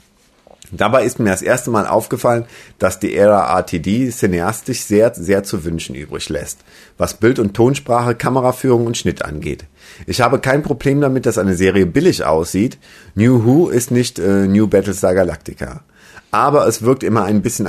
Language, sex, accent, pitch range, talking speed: German, male, German, 90-120 Hz, 170 wpm